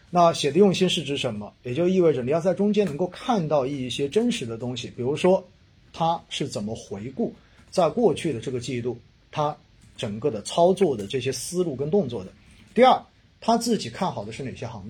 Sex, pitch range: male, 115-165 Hz